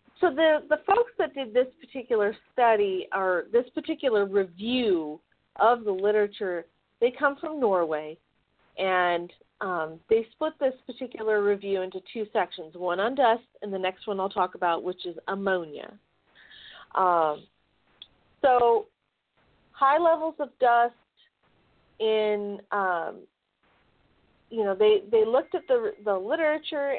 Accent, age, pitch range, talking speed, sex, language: American, 40-59, 185-250 Hz, 135 wpm, female, English